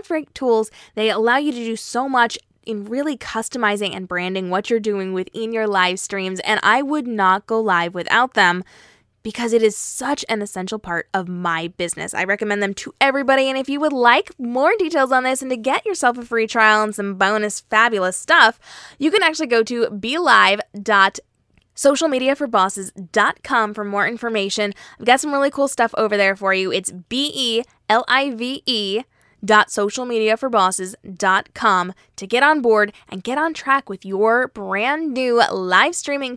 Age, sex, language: 10-29, female, English